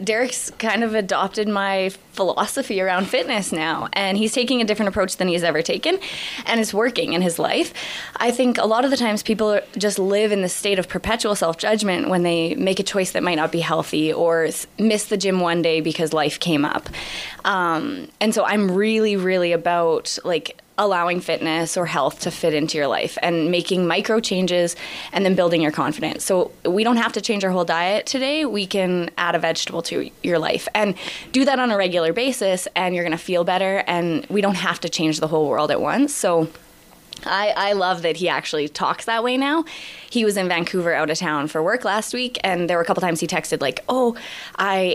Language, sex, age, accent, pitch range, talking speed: English, female, 20-39, American, 170-220 Hz, 215 wpm